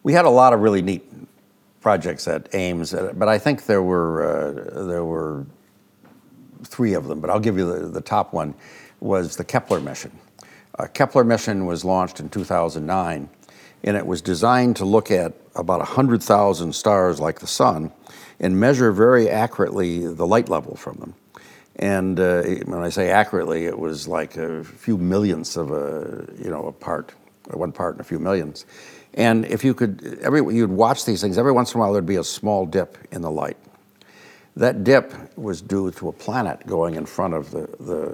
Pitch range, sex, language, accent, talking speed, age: 85-105 Hz, male, Czech, American, 190 wpm, 60-79